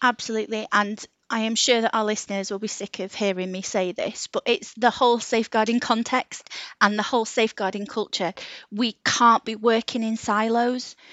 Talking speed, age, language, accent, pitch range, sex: 180 wpm, 30-49, English, British, 195-230 Hz, female